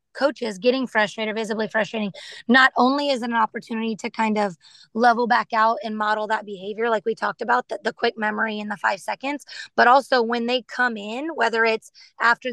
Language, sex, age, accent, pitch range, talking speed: English, female, 20-39, American, 220-255 Hz, 200 wpm